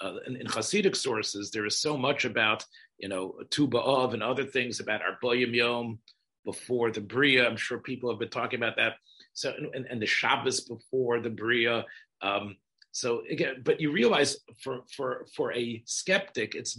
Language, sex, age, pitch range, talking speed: English, male, 40-59, 120-170 Hz, 180 wpm